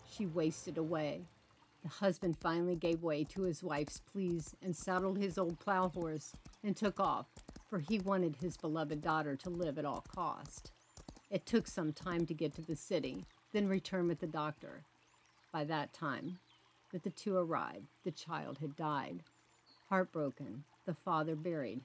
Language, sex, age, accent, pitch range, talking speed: English, female, 50-69, American, 155-190 Hz, 170 wpm